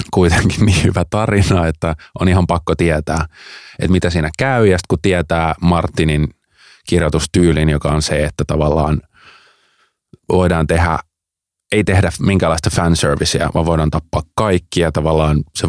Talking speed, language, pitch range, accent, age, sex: 135 wpm, Finnish, 80-95 Hz, native, 30-49, male